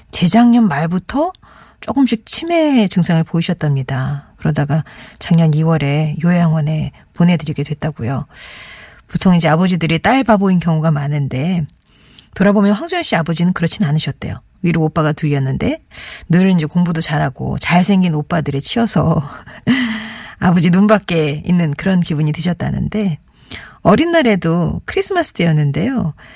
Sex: female